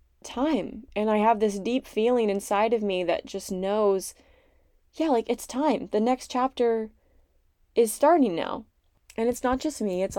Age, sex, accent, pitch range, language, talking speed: 20-39, female, American, 175-230 Hz, English, 170 wpm